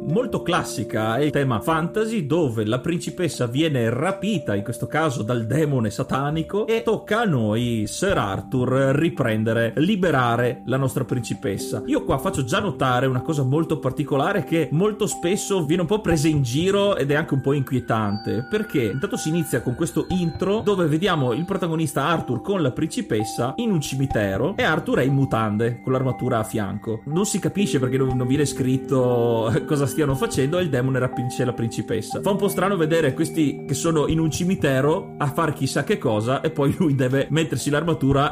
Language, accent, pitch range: Italian, native, 125-165 Hz